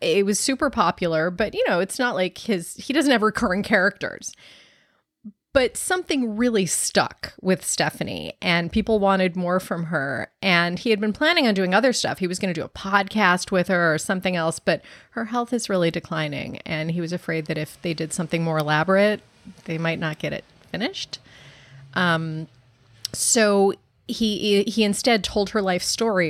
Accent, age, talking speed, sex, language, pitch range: American, 30-49, 185 wpm, female, English, 170-240 Hz